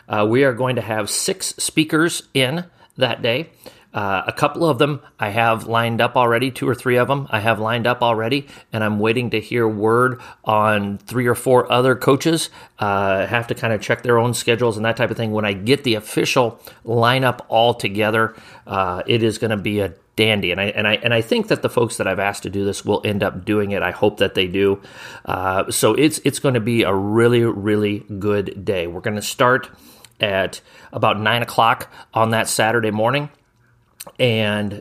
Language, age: English, 40-59